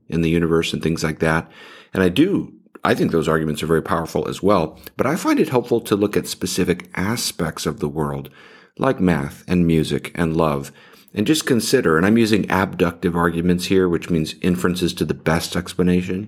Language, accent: English, American